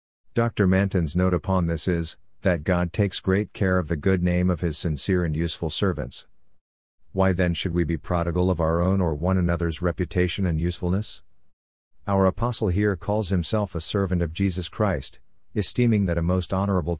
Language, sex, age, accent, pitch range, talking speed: English, male, 50-69, American, 85-100 Hz, 180 wpm